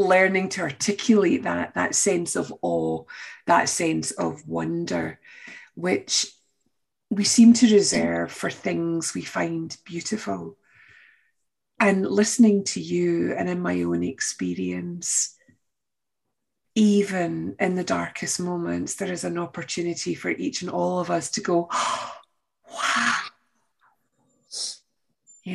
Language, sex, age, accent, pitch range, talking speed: English, female, 30-49, British, 140-195 Hz, 115 wpm